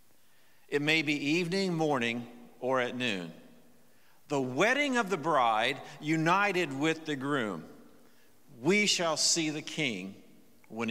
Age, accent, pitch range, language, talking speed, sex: 50-69, American, 165-210 Hz, English, 125 wpm, male